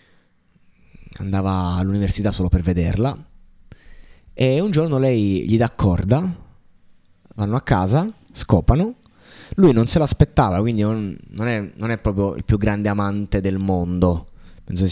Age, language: 20-39, Italian